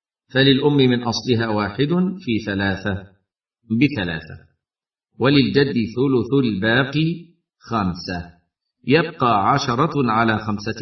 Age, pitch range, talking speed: 50-69, 110-145 Hz, 85 wpm